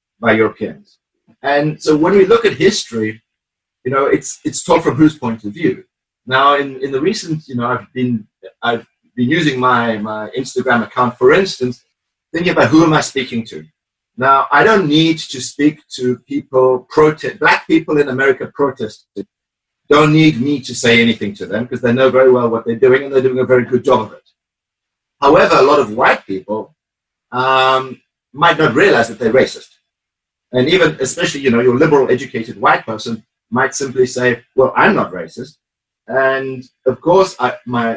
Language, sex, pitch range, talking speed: English, male, 115-150 Hz, 185 wpm